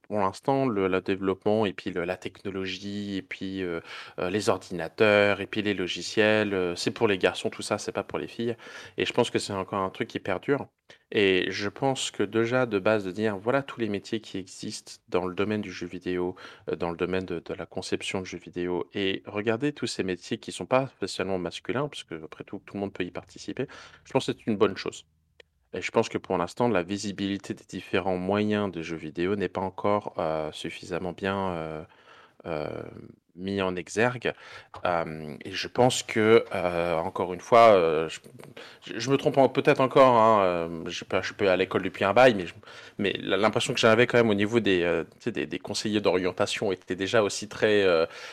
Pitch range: 90-115 Hz